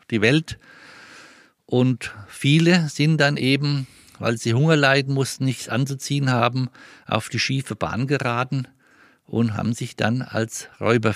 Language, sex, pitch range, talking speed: German, male, 115-140 Hz, 140 wpm